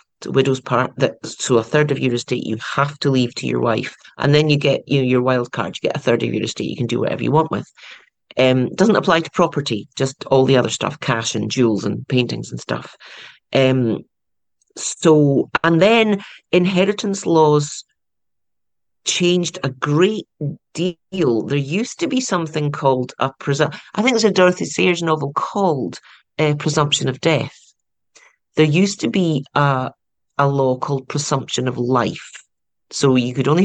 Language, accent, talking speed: English, British, 185 wpm